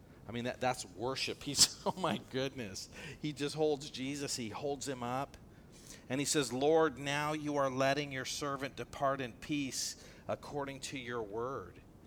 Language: English